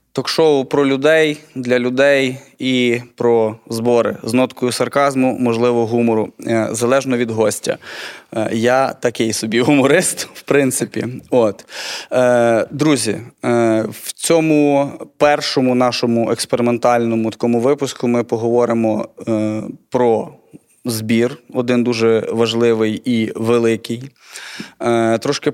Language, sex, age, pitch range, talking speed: Ukrainian, male, 20-39, 115-135 Hz, 95 wpm